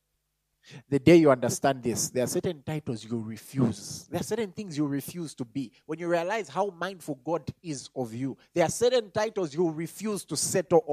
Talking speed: 200 wpm